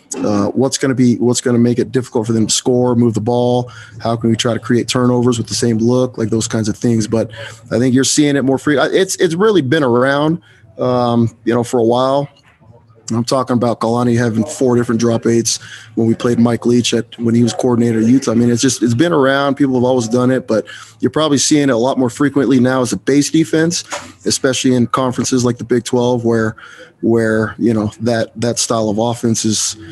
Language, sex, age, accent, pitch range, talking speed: English, male, 30-49, American, 115-130 Hz, 235 wpm